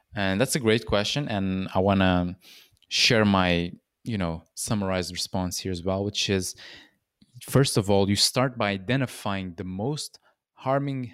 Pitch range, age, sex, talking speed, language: 100-120 Hz, 20-39, male, 160 wpm, English